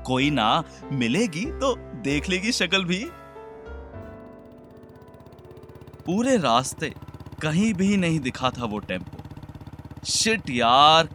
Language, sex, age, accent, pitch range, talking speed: Hindi, male, 30-49, native, 125-185 Hz, 100 wpm